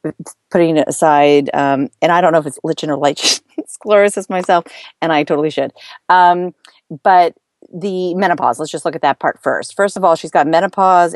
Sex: female